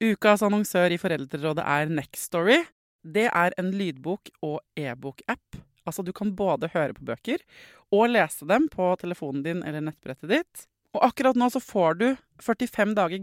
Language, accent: English, Swedish